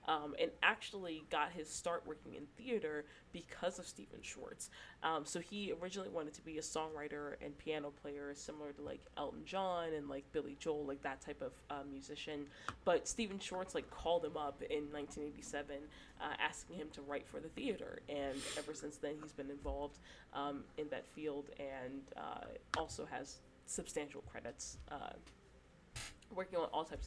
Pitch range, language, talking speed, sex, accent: 140-160 Hz, English, 175 wpm, female, American